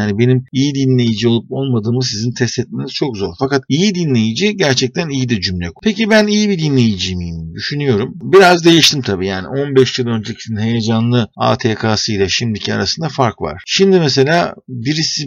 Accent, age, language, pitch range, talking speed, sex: native, 50-69, Turkish, 110-140 Hz, 160 wpm, male